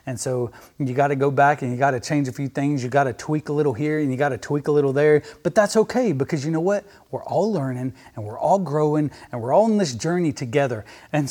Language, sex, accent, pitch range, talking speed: English, male, American, 135-170 Hz, 275 wpm